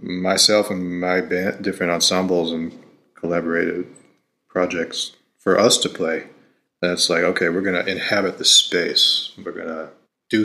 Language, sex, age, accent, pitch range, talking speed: English, male, 30-49, American, 85-95 Hz, 150 wpm